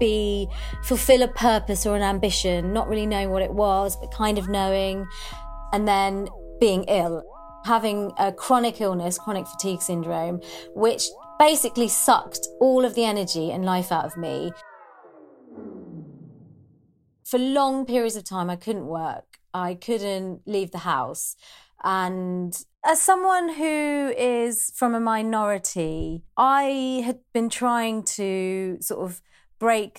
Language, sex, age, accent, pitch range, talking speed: English, female, 30-49, British, 175-225 Hz, 140 wpm